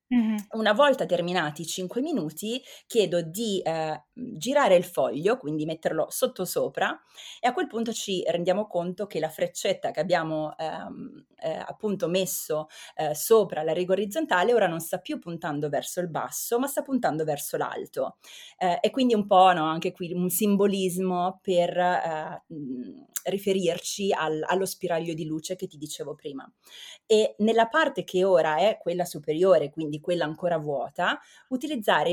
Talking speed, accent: 160 wpm, native